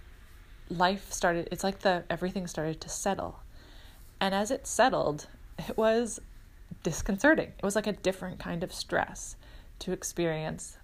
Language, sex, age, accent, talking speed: English, female, 20-39, American, 145 wpm